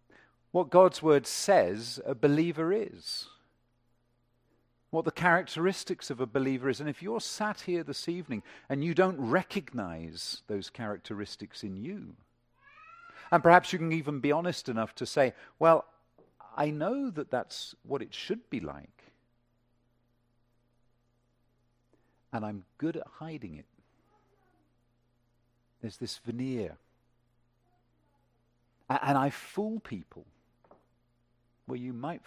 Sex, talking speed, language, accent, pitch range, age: male, 120 wpm, English, British, 110-150 Hz, 50-69